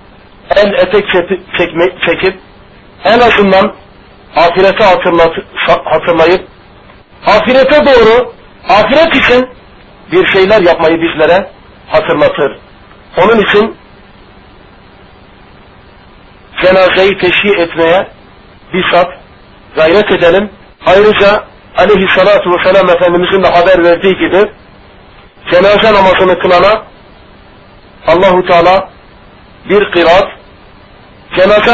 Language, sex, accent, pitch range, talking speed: Turkish, male, native, 170-205 Hz, 80 wpm